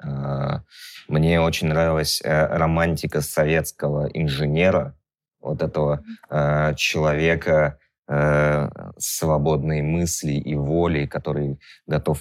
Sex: male